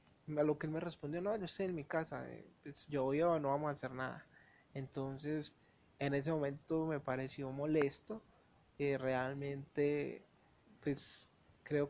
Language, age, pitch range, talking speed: Spanish, 30-49, 140-160 Hz, 165 wpm